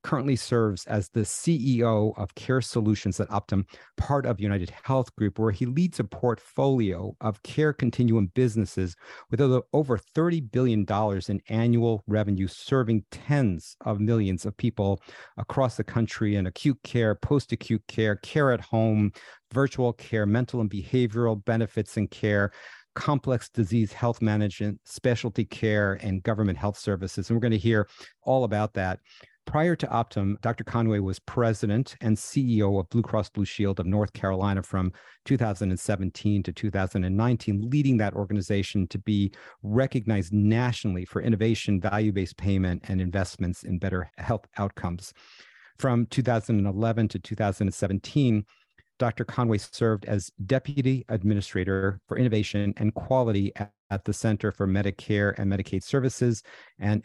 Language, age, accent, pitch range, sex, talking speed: English, 50-69, American, 100-120 Hz, male, 145 wpm